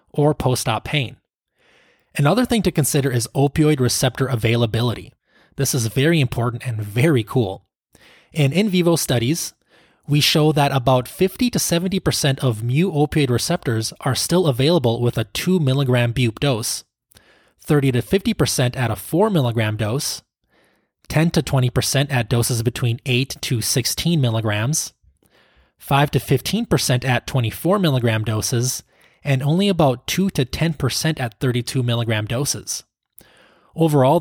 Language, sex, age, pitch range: English, male, 20-39, 120-150 Hz